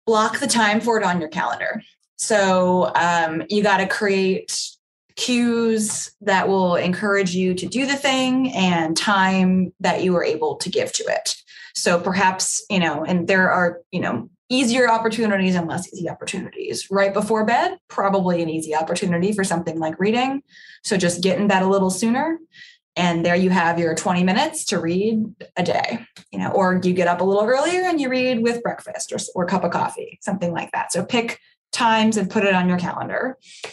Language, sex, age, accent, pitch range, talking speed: English, female, 20-39, American, 175-225 Hz, 195 wpm